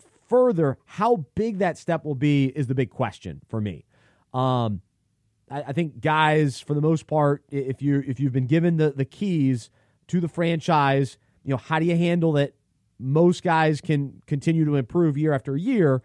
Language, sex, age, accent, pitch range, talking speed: English, male, 30-49, American, 130-170 Hz, 185 wpm